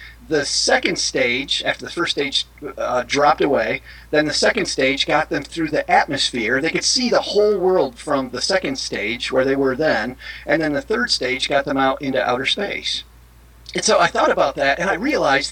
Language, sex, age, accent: English, male, 40-59, American